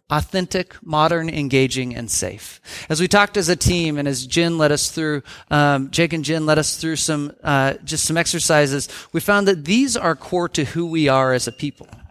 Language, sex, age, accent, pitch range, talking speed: English, male, 40-59, American, 135-175 Hz, 210 wpm